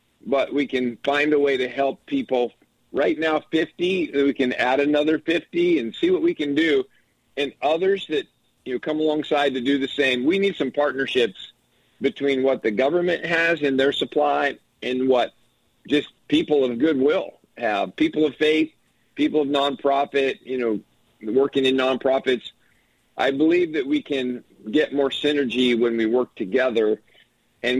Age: 50-69